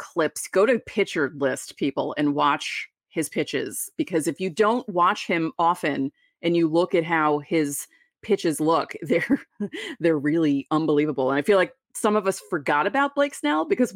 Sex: female